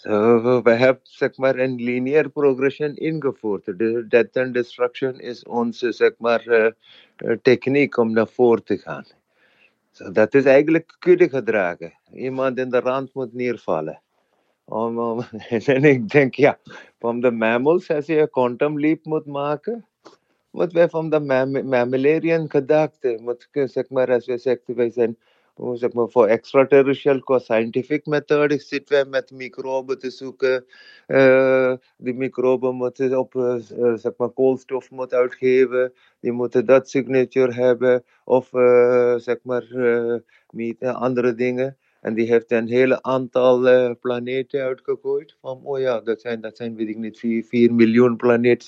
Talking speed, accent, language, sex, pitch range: 145 wpm, Indian, Dutch, male, 120-135 Hz